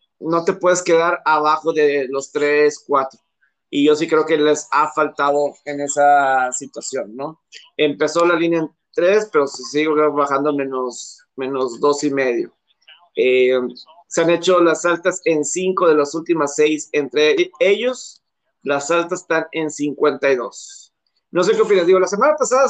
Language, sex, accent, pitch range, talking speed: Spanish, male, Mexican, 145-195 Hz, 160 wpm